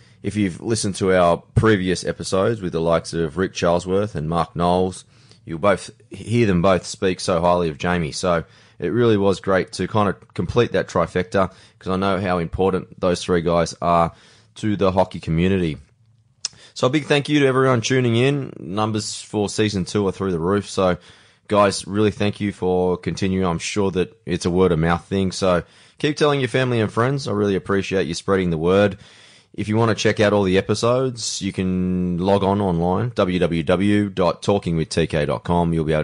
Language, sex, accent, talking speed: English, male, Australian, 190 wpm